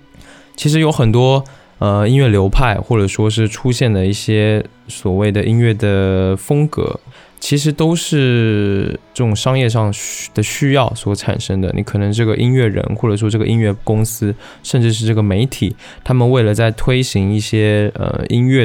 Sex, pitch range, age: male, 100-125 Hz, 20-39